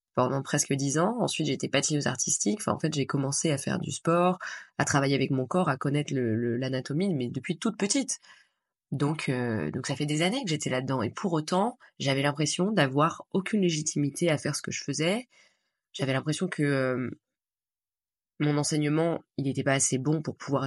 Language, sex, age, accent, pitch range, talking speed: French, female, 20-39, French, 135-165 Hz, 195 wpm